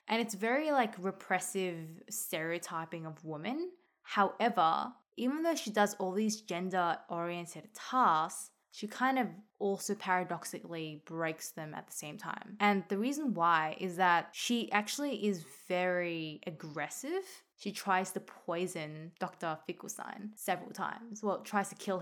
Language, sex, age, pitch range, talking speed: English, female, 20-39, 180-235 Hz, 140 wpm